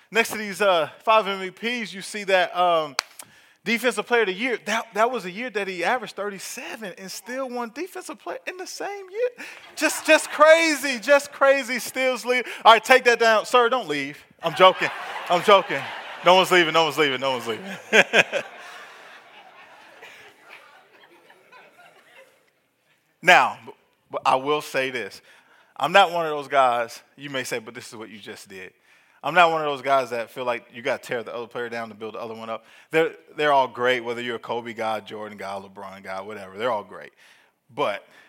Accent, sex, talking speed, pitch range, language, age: American, male, 195 wpm, 160-250 Hz, English, 20-39